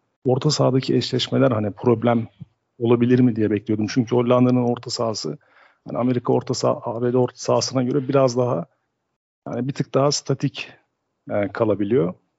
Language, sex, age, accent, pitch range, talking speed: Turkish, male, 50-69, native, 120-140 Hz, 140 wpm